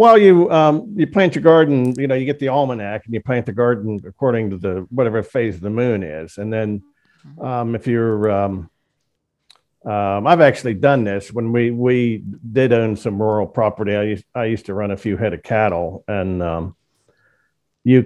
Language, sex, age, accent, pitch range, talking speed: English, male, 50-69, American, 105-140 Hz, 200 wpm